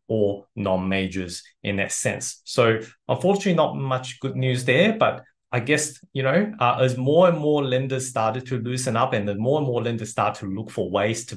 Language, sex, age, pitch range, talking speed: English, male, 20-39, 100-125 Hz, 205 wpm